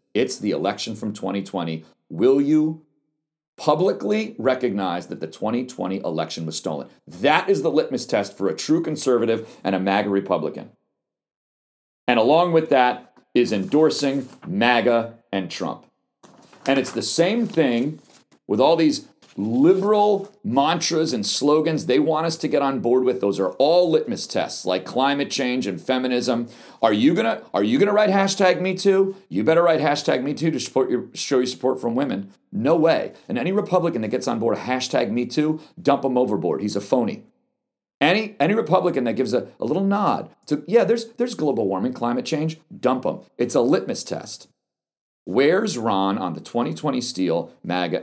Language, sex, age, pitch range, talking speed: English, male, 40-59, 115-185 Hz, 170 wpm